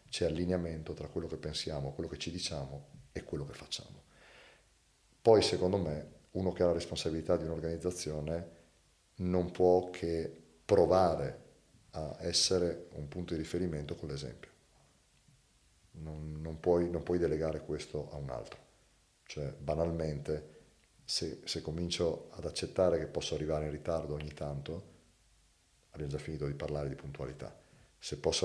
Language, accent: Italian, native